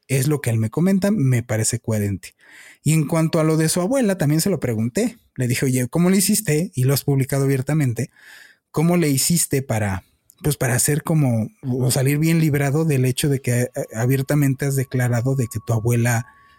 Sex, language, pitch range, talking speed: male, Spanish, 120-155 Hz, 200 wpm